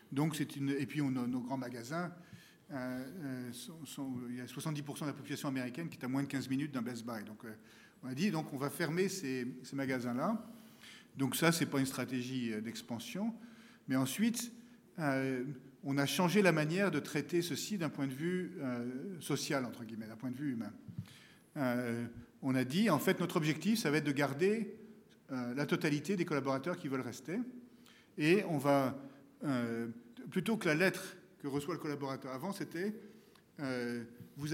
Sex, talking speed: male, 190 wpm